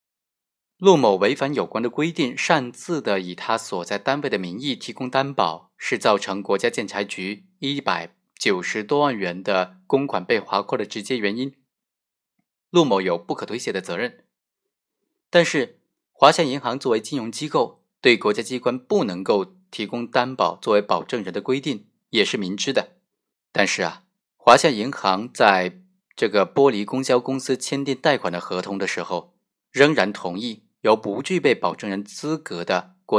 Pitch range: 100-150 Hz